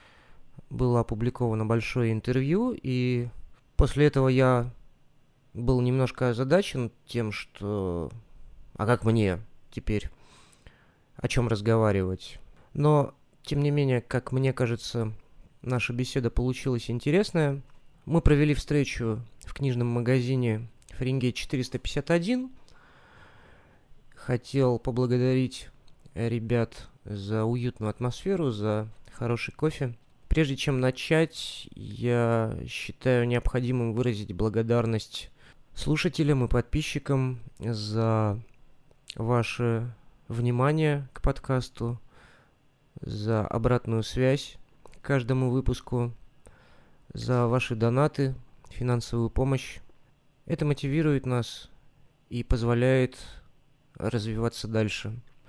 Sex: male